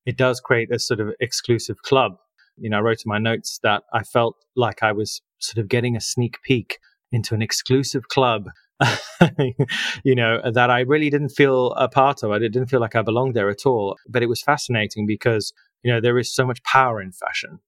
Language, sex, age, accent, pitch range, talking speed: English, male, 30-49, British, 105-125 Hz, 215 wpm